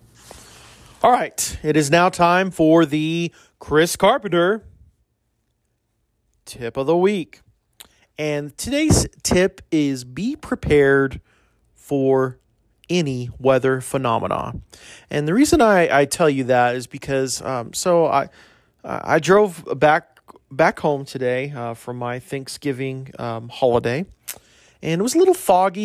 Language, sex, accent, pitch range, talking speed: English, male, American, 130-175 Hz, 125 wpm